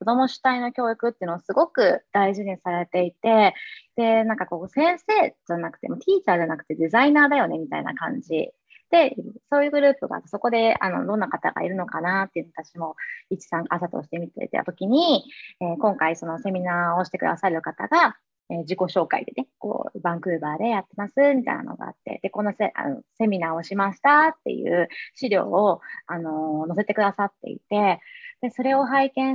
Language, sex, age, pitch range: Japanese, female, 20-39, 180-250 Hz